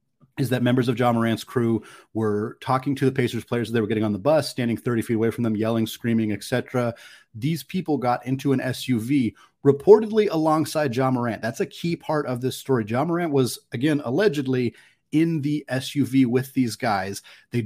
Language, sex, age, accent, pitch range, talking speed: English, male, 30-49, American, 120-150 Hz, 200 wpm